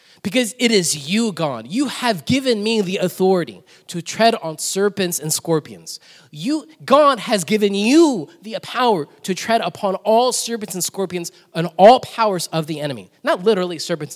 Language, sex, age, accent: English, male, 20-39, American